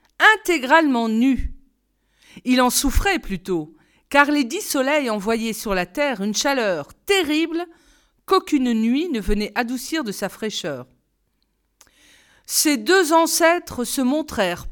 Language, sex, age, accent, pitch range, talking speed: French, female, 40-59, French, 215-330 Hz, 120 wpm